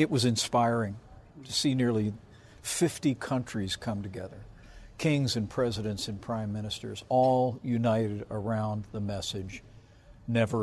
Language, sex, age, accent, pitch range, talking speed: English, male, 60-79, American, 110-130 Hz, 125 wpm